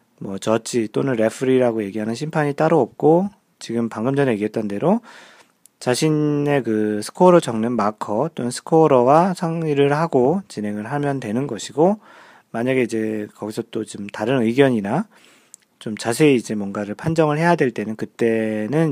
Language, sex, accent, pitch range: Korean, male, native, 105-145 Hz